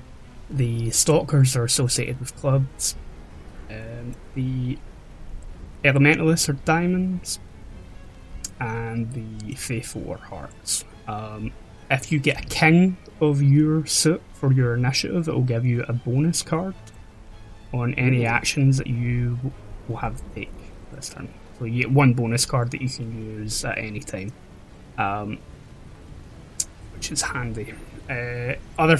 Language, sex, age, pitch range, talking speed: English, male, 20-39, 100-130 Hz, 135 wpm